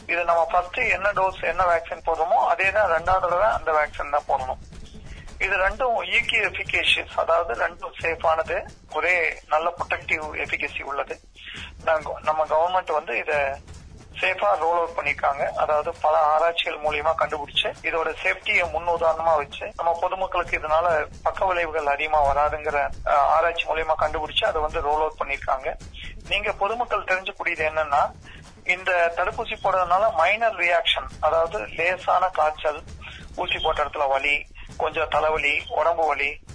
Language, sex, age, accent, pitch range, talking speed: Tamil, male, 30-49, native, 150-185 Hz, 90 wpm